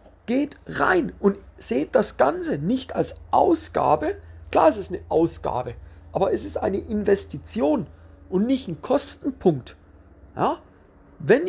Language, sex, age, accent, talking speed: German, male, 40-59, German, 130 wpm